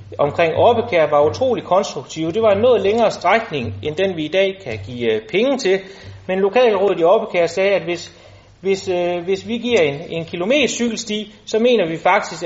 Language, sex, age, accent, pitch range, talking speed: Danish, male, 30-49, native, 155-215 Hz, 190 wpm